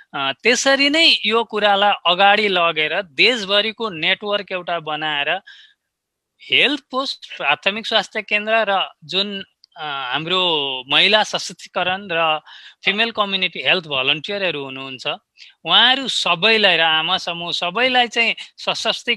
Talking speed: 105 wpm